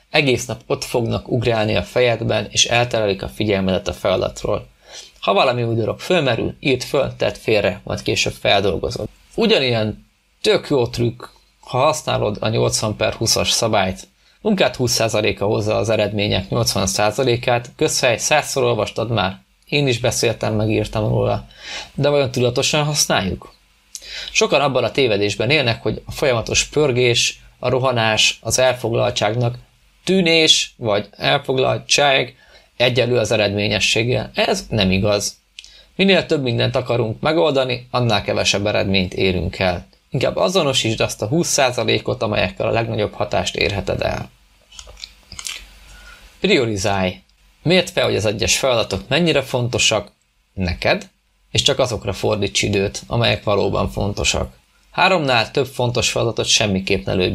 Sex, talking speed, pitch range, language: male, 130 wpm, 100-125 Hz, Hungarian